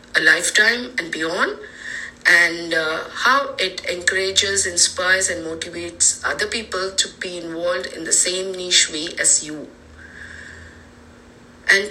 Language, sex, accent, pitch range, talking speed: English, female, Indian, 175-205 Hz, 125 wpm